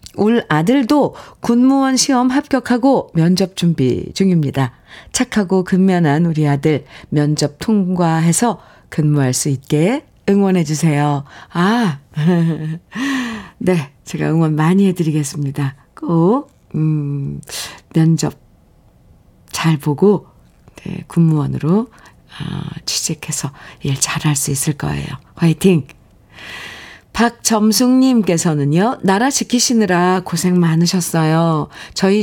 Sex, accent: female, native